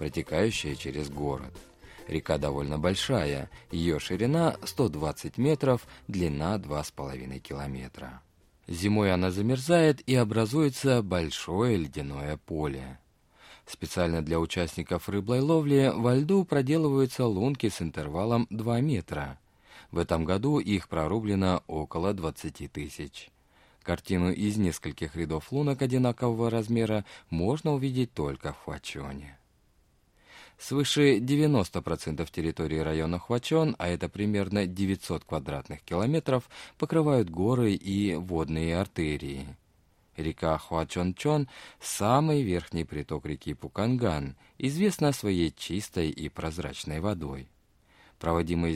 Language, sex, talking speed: Russian, male, 105 wpm